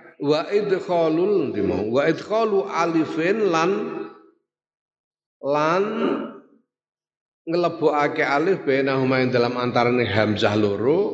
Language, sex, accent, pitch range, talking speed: Indonesian, male, native, 130-190 Hz, 85 wpm